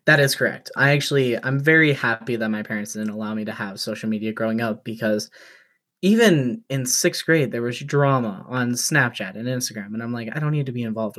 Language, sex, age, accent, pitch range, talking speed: English, male, 10-29, American, 110-130 Hz, 220 wpm